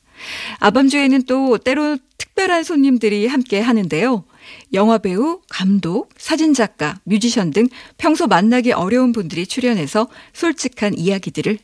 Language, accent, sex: Korean, native, female